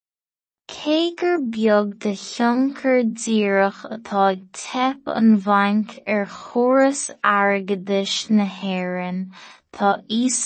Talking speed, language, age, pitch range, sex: 85 wpm, English, 20-39, 195-230 Hz, female